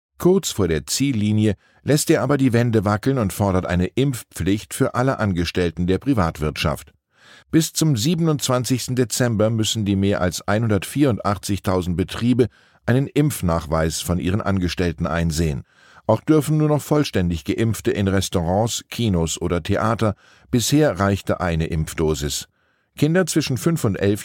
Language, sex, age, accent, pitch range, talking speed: German, male, 10-29, German, 90-130 Hz, 135 wpm